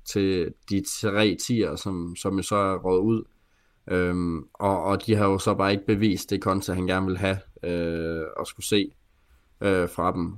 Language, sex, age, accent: Danish, male, 20-39, native